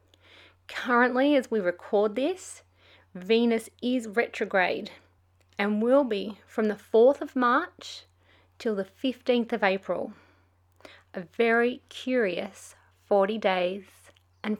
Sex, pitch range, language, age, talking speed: female, 165-250 Hz, English, 30-49, 110 wpm